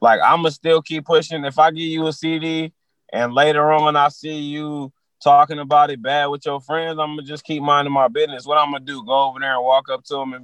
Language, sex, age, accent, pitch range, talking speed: English, male, 20-39, American, 145-165 Hz, 275 wpm